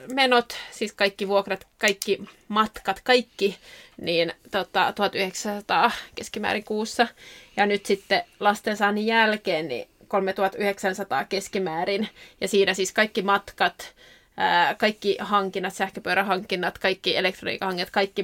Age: 20-39